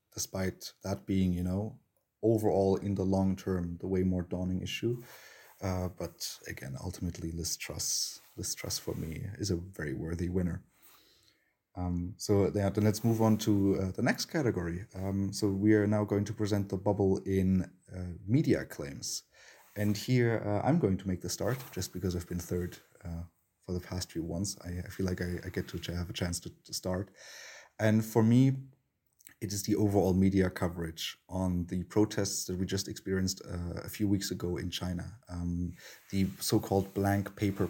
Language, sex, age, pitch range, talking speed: English, male, 30-49, 90-105 Hz, 190 wpm